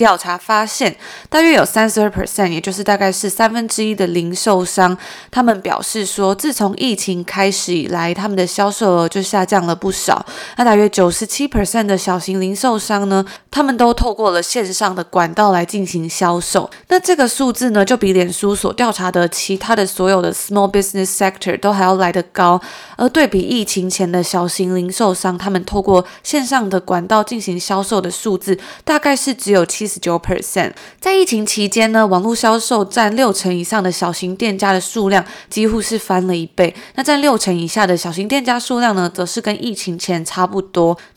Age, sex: 20-39, female